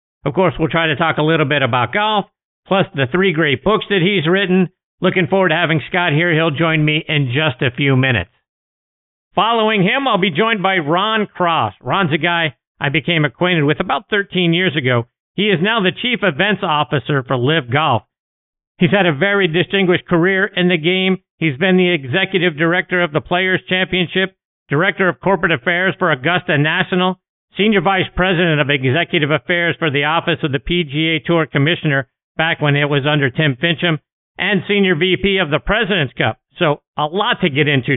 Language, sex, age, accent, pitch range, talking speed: English, male, 50-69, American, 150-185 Hz, 190 wpm